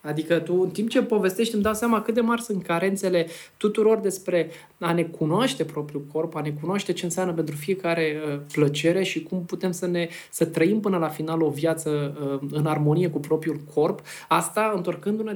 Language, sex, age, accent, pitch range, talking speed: Romanian, male, 20-39, native, 155-190 Hz, 190 wpm